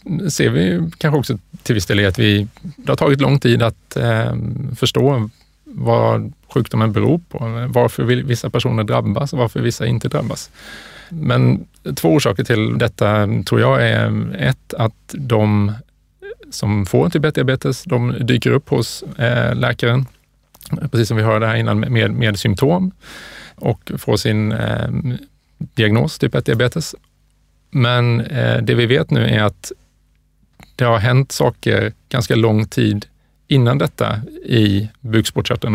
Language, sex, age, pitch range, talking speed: Swedish, male, 30-49, 110-130 Hz, 150 wpm